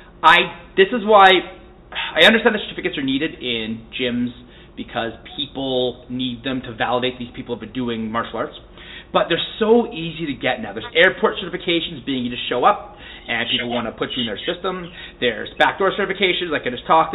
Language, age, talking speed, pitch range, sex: English, 30-49, 195 wpm, 140-215 Hz, male